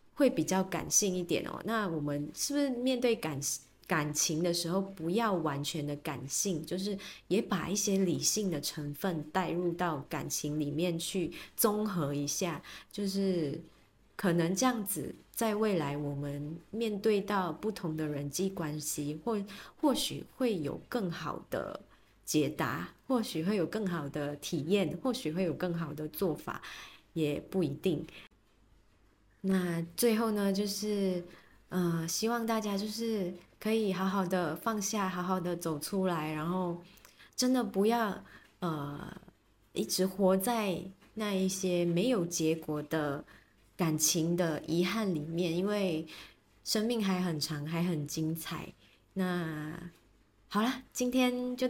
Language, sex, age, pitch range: Chinese, female, 20-39, 155-205 Hz